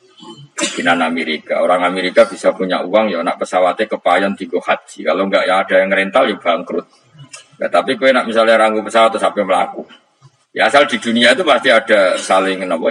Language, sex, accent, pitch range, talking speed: Indonesian, male, native, 100-130 Hz, 185 wpm